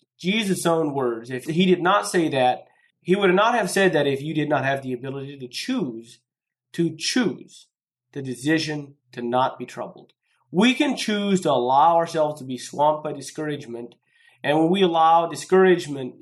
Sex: male